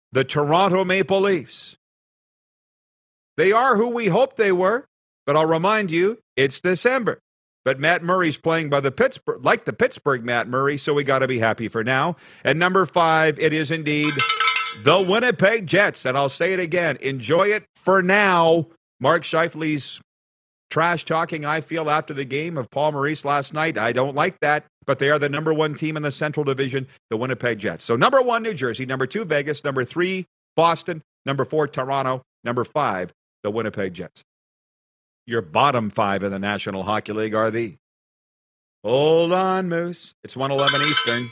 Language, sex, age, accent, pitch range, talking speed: English, male, 50-69, American, 125-170 Hz, 180 wpm